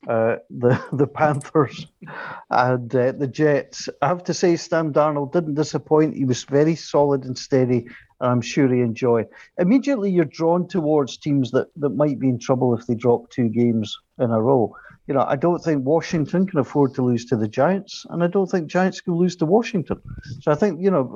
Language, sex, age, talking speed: English, male, 50-69, 205 wpm